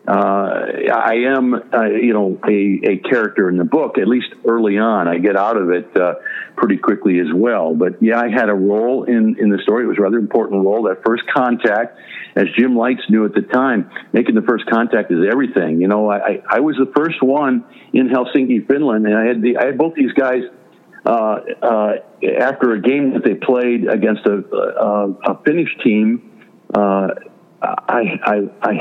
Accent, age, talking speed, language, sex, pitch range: American, 60-79, 200 wpm, English, male, 105-125 Hz